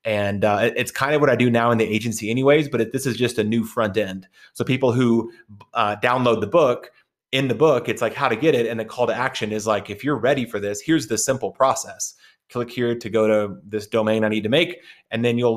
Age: 30-49